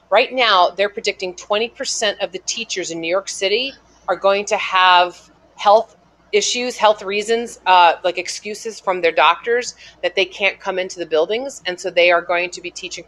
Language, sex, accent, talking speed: English, female, American, 190 wpm